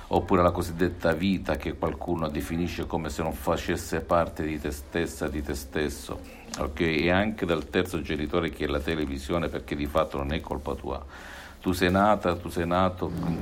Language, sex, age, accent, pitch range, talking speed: Italian, male, 50-69, native, 75-90 Hz, 190 wpm